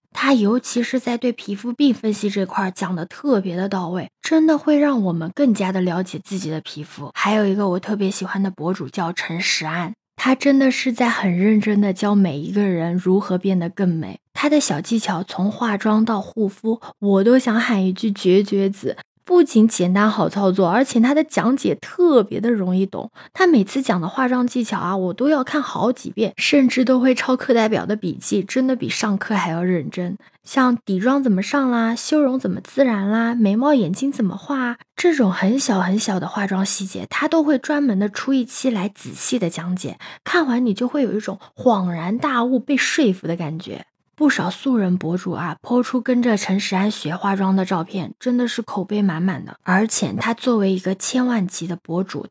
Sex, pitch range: female, 185-245 Hz